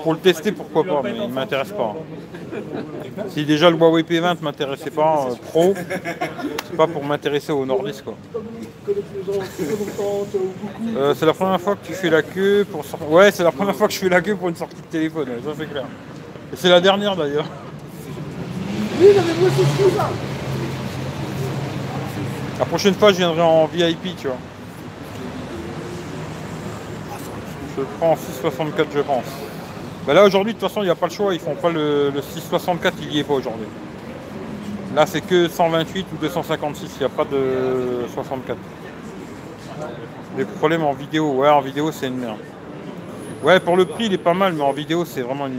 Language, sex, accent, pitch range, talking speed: French, male, French, 150-185 Hz, 180 wpm